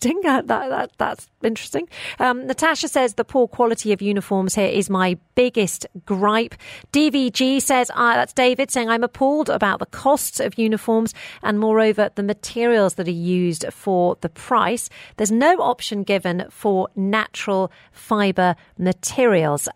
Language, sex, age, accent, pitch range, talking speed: English, female, 40-59, British, 185-240 Hz, 150 wpm